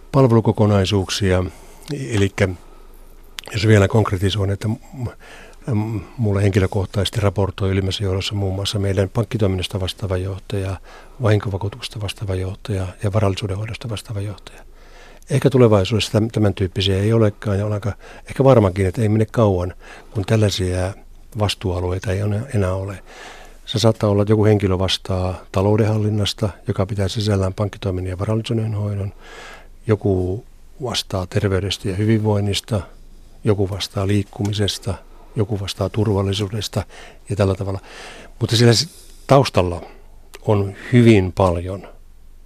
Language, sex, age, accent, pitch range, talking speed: Finnish, male, 60-79, native, 95-110 Hz, 115 wpm